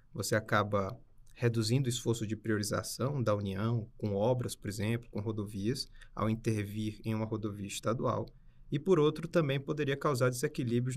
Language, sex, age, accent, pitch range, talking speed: Portuguese, male, 20-39, Brazilian, 110-130 Hz, 155 wpm